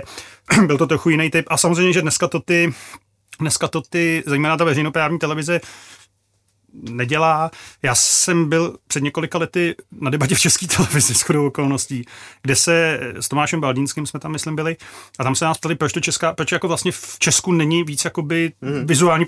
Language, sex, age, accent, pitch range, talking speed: Czech, male, 30-49, native, 130-155 Hz, 175 wpm